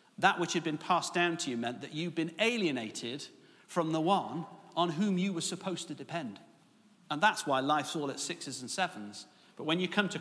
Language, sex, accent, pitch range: English, male, British, 155-205 Hz